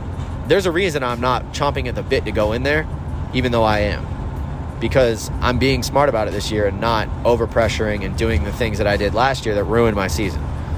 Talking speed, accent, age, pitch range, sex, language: 235 wpm, American, 20-39, 85-120 Hz, male, English